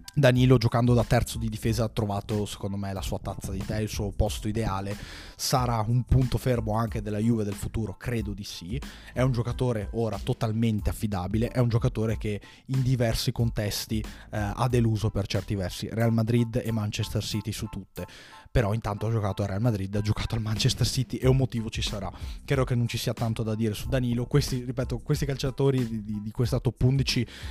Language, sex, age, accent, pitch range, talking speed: Italian, male, 20-39, native, 105-125 Hz, 205 wpm